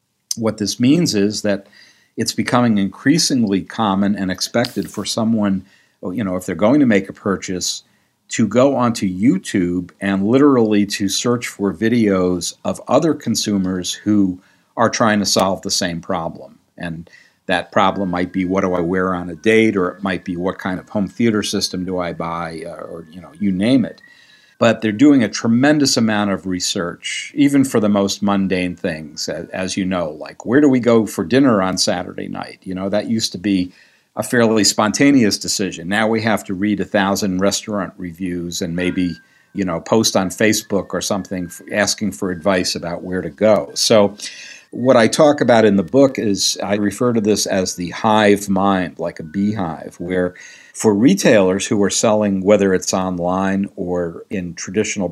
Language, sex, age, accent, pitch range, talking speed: English, male, 50-69, American, 90-110 Hz, 185 wpm